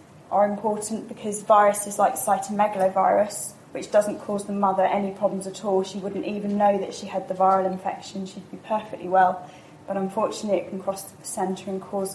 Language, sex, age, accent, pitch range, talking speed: English, female, 10-29, British, 185-205 Hz, 190 wpm